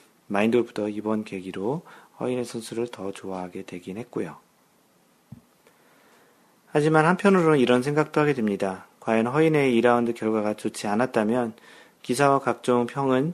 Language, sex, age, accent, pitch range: Korean, male, 40-59, native, 100-130 Hz